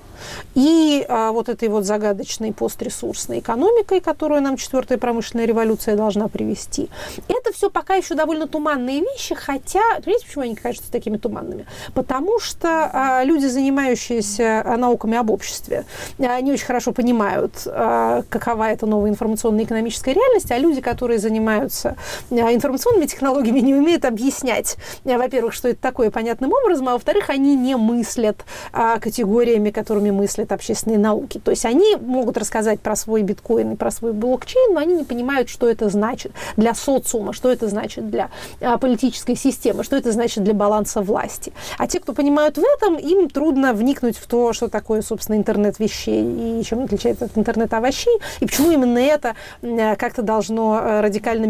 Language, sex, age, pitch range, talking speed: Russian, female, 30-49, 220-275 Hz, 155 wpm